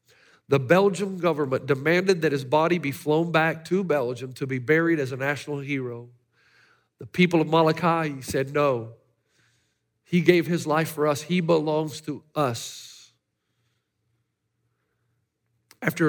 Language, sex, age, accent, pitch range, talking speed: English, male, 50-69, American, 120-155 Hz, 135 wpm